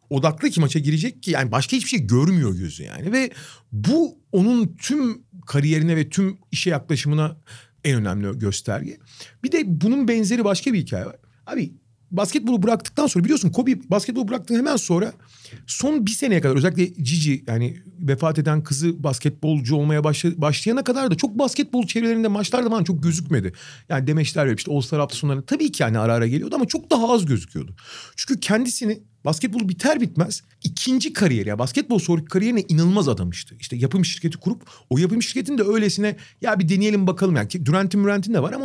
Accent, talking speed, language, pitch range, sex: native, 180 wpm, Turkish, 130-215 Hz, male